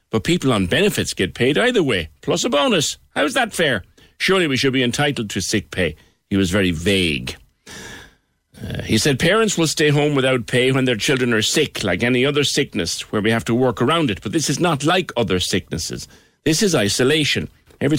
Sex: male